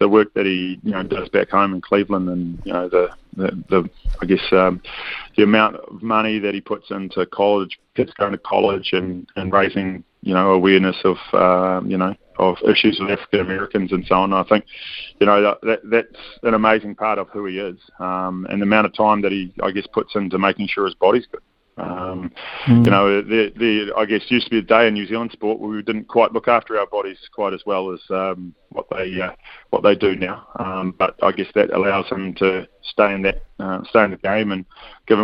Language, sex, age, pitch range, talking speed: English, male, 20-39, 95-110 Hz, 230 wpm